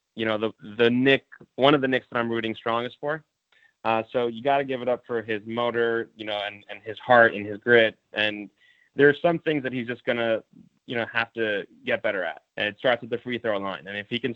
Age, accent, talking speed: 20-39, American, 265 wpm